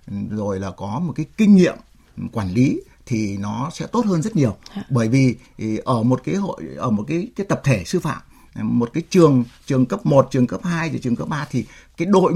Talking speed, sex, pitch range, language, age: 220 wpm, male, 120-175 Hz, Vietnamese, 60-79